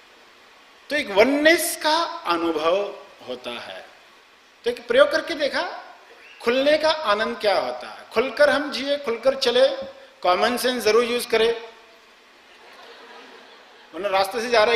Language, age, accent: Hindi, 50-69, native